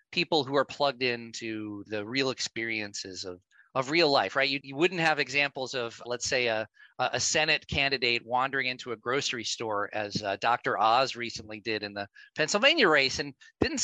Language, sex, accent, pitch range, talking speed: English, male, American, 120-165 Hz, 180 wpm